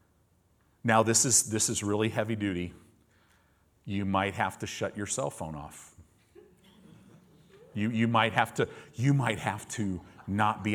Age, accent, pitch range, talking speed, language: 40-59, American, 95-125 Hz, 155 wpm, English